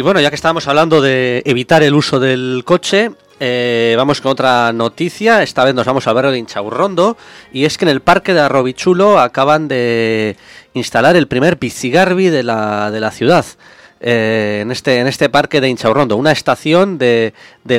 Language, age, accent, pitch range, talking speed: English, 20-39, Spanish, 110-150 Hz, 185 wpm